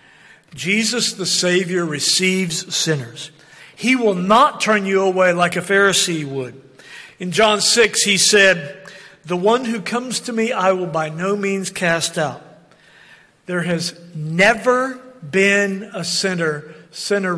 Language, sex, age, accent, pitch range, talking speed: English, male, 50-69, American, 155-190 Hz, 140 wpm